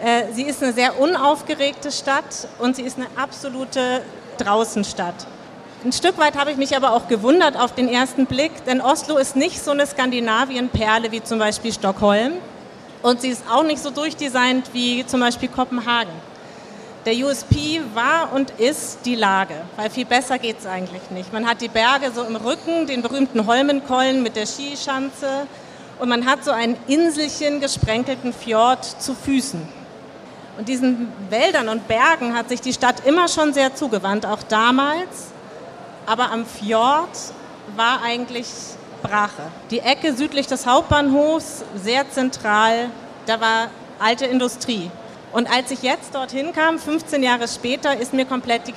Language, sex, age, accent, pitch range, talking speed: German, female, 40-59, German, 230-280 Hz, 160 wpm